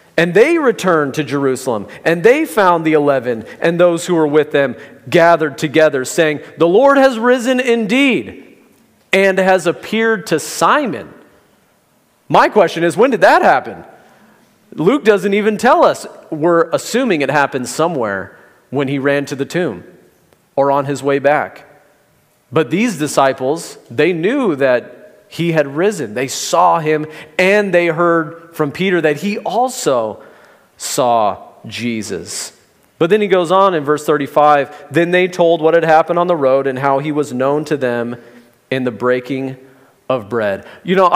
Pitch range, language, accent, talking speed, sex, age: 140-175 Hz, English, American, 160 wpm, male, 40-59